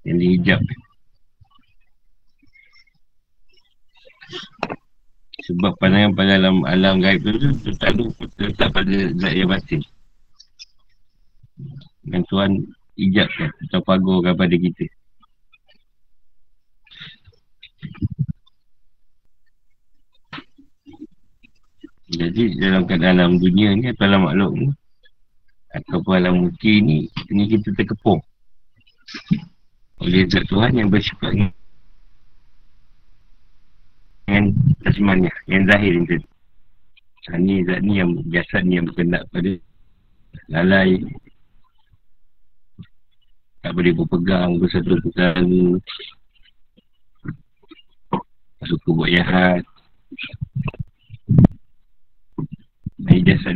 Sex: male